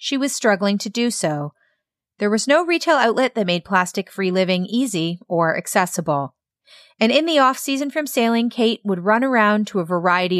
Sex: female